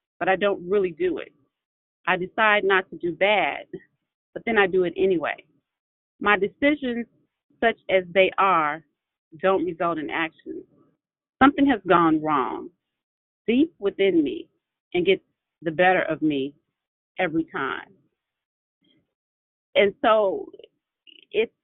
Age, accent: 40-59, American